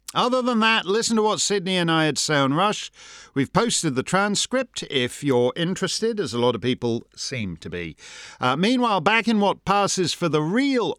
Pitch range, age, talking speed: 140-220 Hz, 50-69, 200 wpm